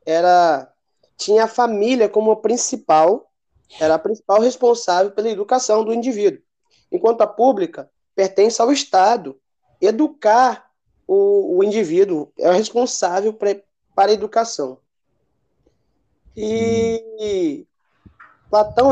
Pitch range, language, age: 200-255 Hz, Portuguese, 20-39